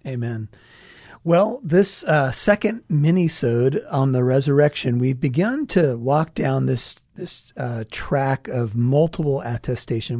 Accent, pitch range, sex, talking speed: American, 120-155 Hz, male, 125 wpm